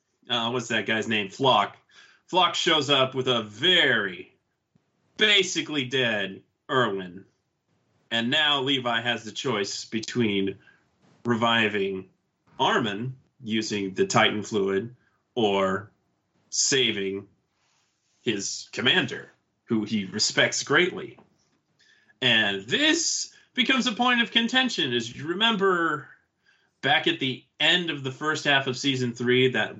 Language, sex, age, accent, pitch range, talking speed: English, male, 30-49, American, 110-140 Hz, 115 wpm